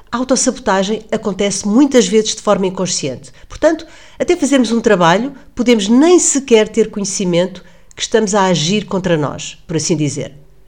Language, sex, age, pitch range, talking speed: Portuguese, female, 40-59, 180-240 Hz, 150 wpm